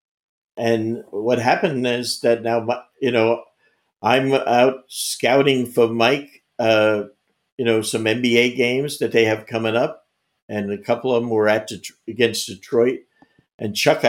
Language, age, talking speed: English, 50-69, 155 wpm